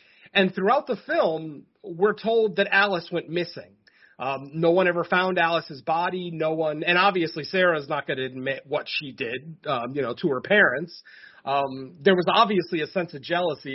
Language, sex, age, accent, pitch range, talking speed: English, male, 40-59, American, 145-190 Hz, 190 wpm